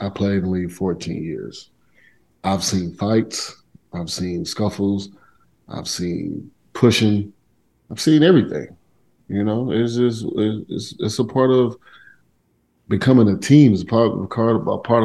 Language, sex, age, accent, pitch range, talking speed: English, male, 30-49, American, 100-120 Hz, 150 wpm